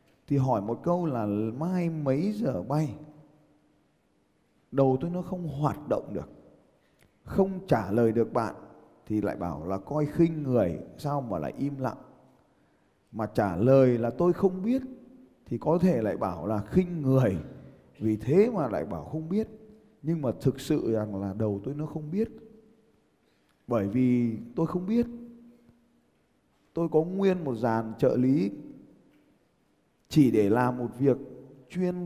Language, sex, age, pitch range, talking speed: Vietnamese, male, 20-39, 125-165 Hz, 155 wpm